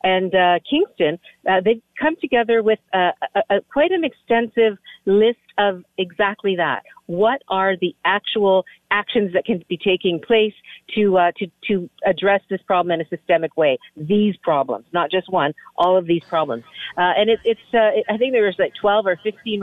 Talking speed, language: 180 wpm, English